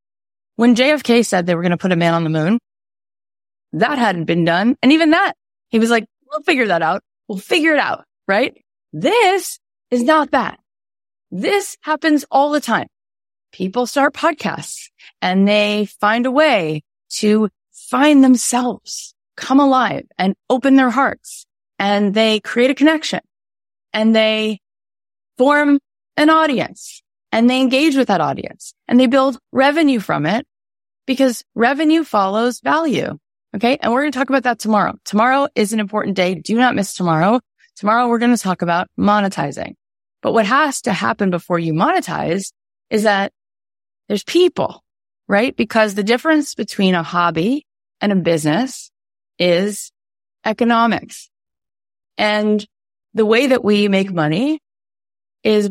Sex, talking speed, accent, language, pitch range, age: female, 150 wpm, American, English, 185-265 Hz, 30-49